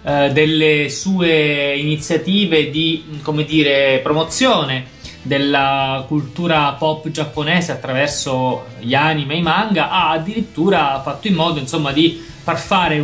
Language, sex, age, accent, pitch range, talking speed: Italian, male, 30-49, native, 140-170 Hz, 120 wpm